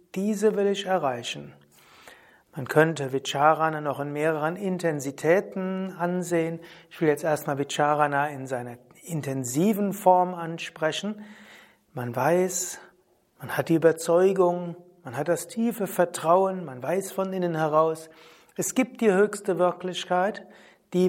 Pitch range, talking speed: 150-190 Hz, 125 wpm